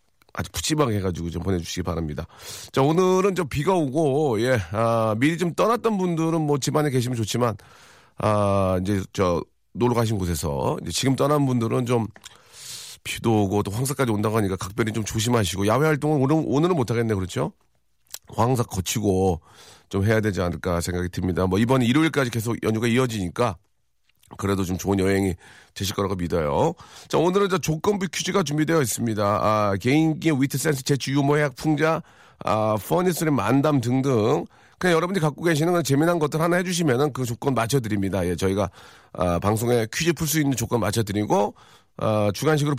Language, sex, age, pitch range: Korean, male, 40-59, 105-155 Hz